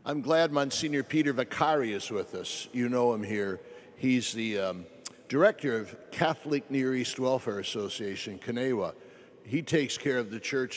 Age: 60-79